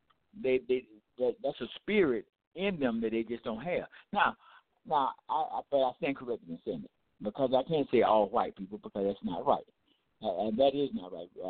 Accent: American